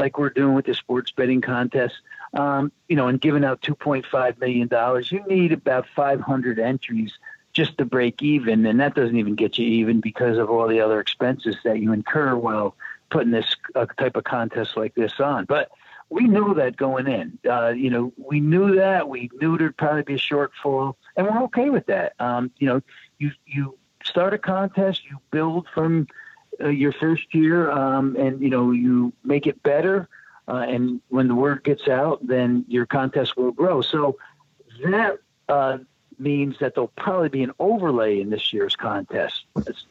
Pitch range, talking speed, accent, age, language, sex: 120-150 Hz, 190 wpm, American, 50-69, English, male